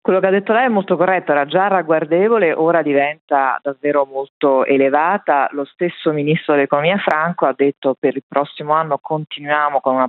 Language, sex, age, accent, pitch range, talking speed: Italian, female, 40-59, native, 130-160 Hz, 180 wpm